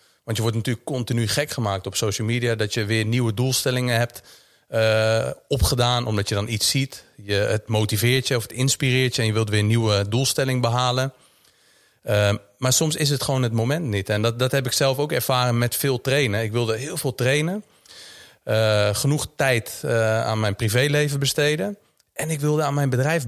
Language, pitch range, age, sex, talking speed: Dutch, 110-135 Hz, 40-59, male, 200 wpm